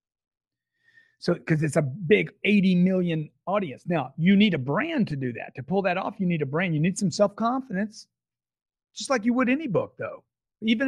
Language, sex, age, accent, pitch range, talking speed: English, male, 40-59, American, 150-215 Hz, 200 wpm